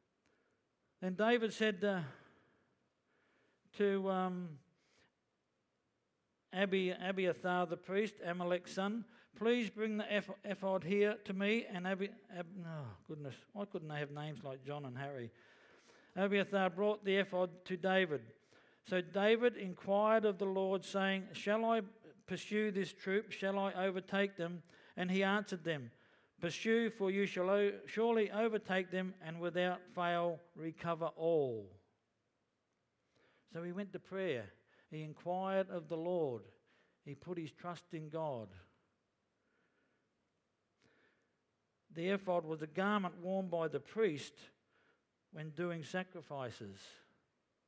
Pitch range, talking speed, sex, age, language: 155-200 Hz, 125 wpm, male, 60-79, English